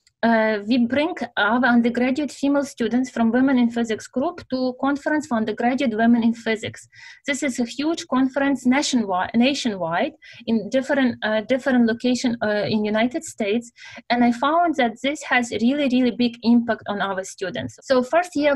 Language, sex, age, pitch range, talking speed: English, female, 20-39, 230-275 Hz, 170 wpm